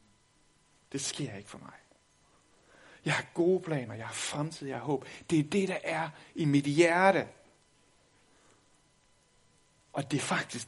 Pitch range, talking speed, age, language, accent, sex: 120-170 Hz, 150 wpm, 60-79, Danish, native, male